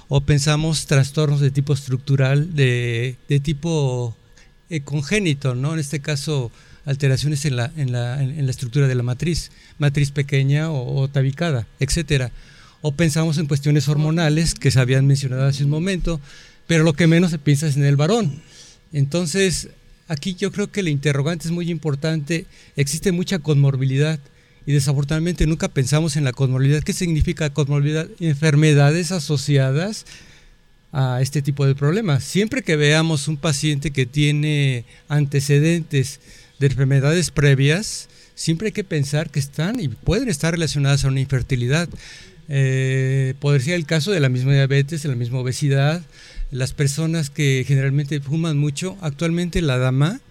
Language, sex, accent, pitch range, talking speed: Spanish, male, Mexican, 135-160 Hz, 155 wpm